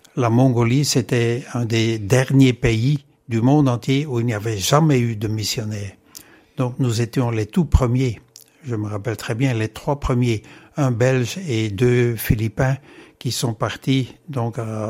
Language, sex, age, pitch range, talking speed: French, male, 60-79, 110-130 Hz, 170 wpm